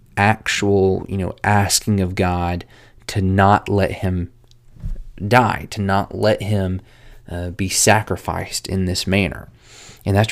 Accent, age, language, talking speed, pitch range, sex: American, 20-39, English, 135 wpm, 95-110 Hz, male